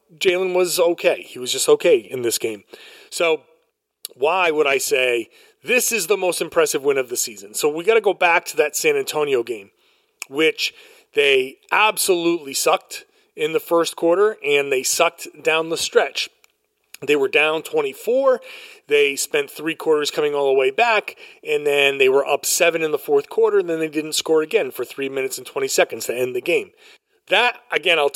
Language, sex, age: English, male, 40-59